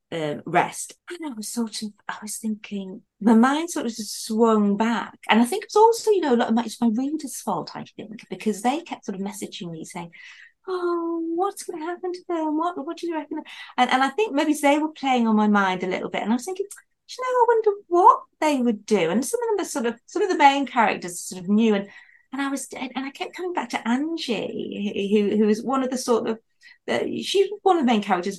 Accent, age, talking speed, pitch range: British, 30-49, 255 wpm, 205-305 Hz